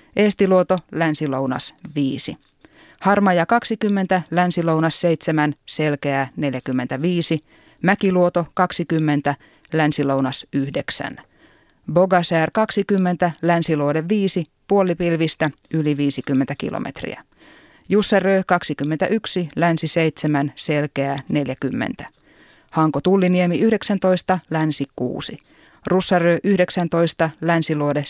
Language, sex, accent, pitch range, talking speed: Finnish, female, native, 145-185 Hz, 75 wpm